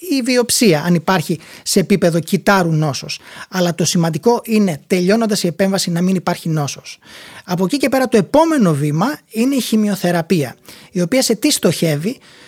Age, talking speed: 30-49, 170 wpm